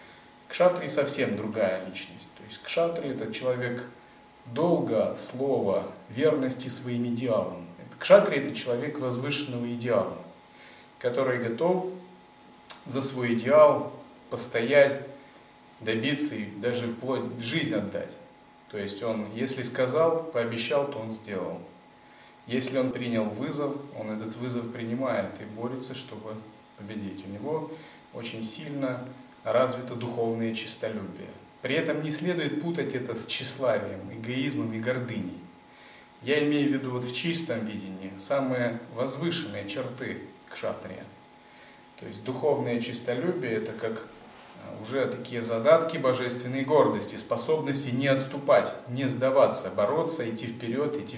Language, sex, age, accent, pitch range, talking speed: Russian, male, 30-49, native, 115-145 Hz, 120 wpm